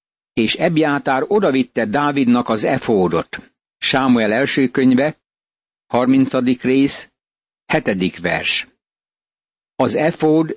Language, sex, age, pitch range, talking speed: Hungarian, male, 60-79, 125-150 Hz, 90 wpm